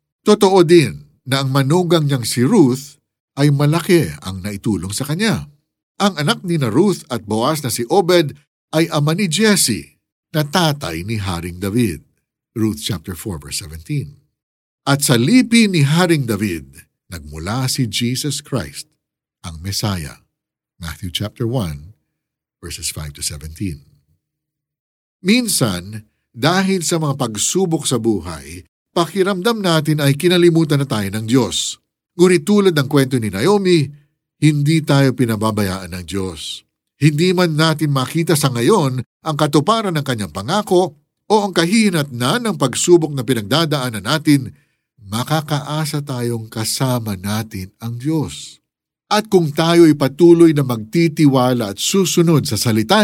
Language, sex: Filipino, male